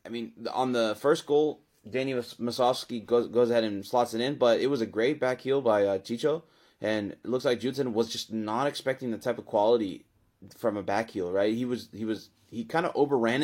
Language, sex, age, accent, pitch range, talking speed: English, male, 20-39, American, 105-125 Hz, 220 wpm